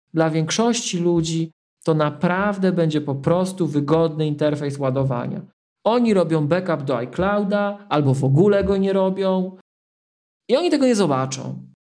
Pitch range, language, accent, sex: 135-175 Hz, Polish, native, male